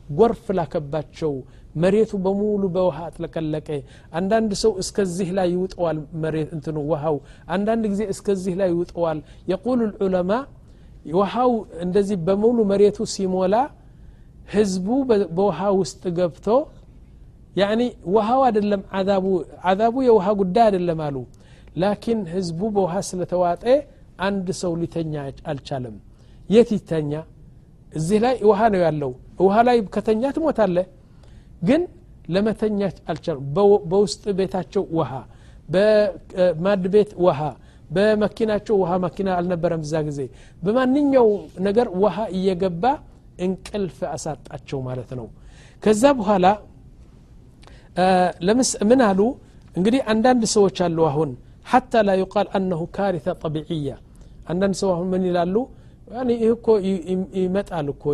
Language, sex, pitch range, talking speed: Amharic, male, 160-210 Hz, 100 wpm